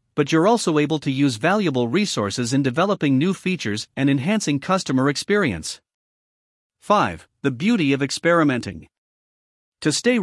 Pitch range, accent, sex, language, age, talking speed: 130-185 Hz, American, male, English, 50-69, 135 wpm